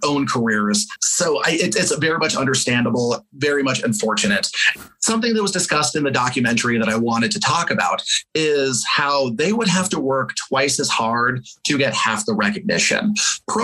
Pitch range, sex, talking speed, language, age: 125-205 Hz, male, 185 wpm, English, 30-49